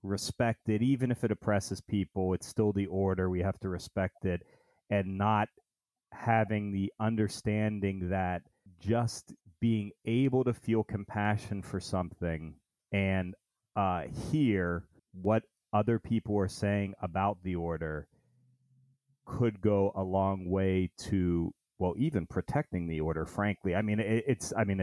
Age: 30-49